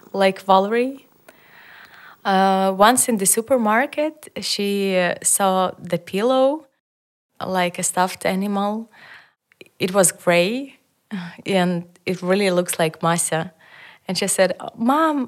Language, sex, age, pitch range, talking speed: Dutch, female, 20-39, 175-210 Hz, 115 wpm